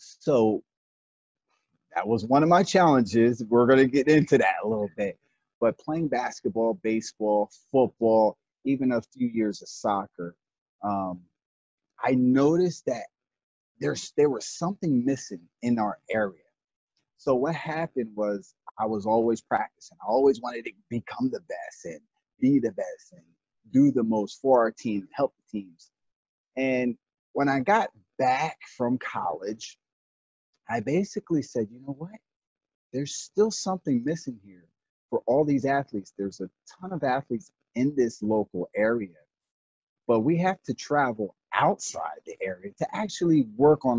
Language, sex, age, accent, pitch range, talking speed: English, male, 30-49, American, 105-150 Hz, 150 wpm